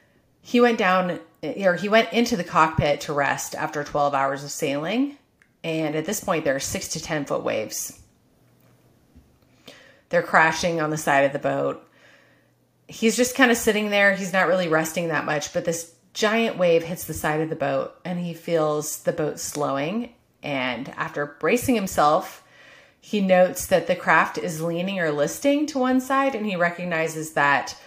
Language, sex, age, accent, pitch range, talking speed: English, female, 30-49, American, 150-195 Hz, 180 wpm